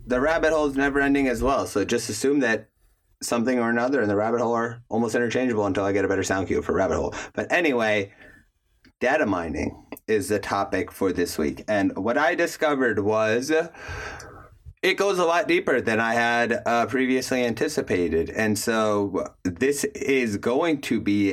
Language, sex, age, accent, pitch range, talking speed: English, male, 30-49, American, 100-120 Hz, 185 wpm